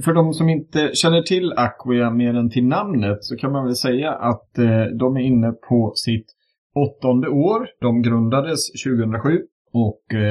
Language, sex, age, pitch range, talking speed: Swedish, male, 30-49, 110-135 Hz, 165 wpm